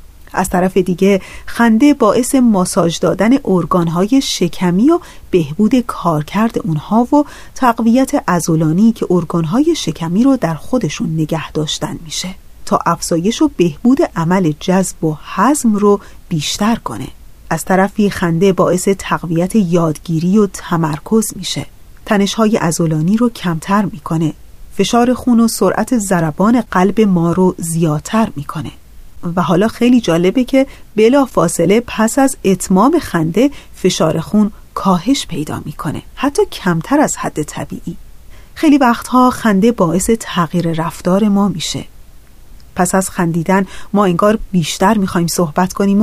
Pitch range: 170-230 Hz